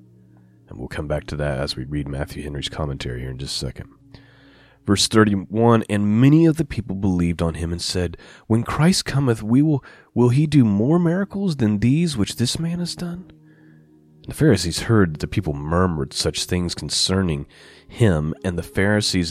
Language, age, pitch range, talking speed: English, 30-49, 85-125 Hz, 190 wpm